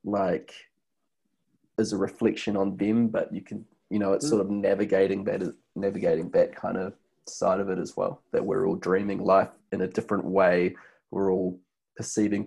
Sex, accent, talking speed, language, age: male, Australian, 180 wpm, English, 20-39